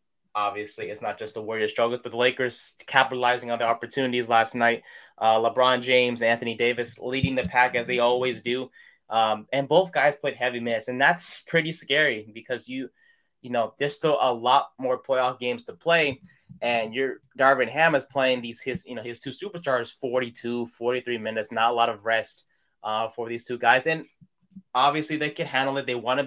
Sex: male